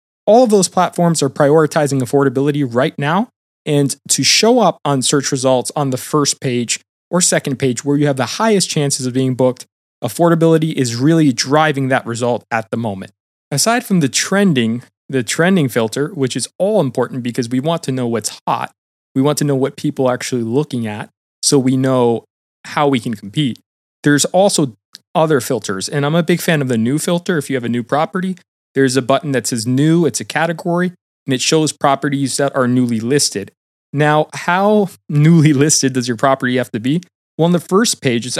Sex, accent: male, American